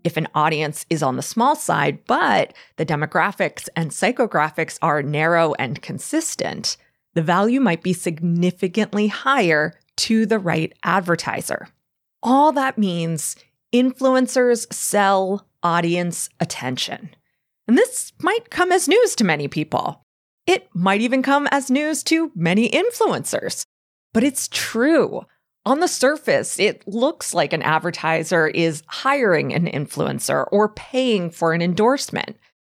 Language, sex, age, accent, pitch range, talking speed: English, female, 30-49, American, 165-255 Hz, 130 wpm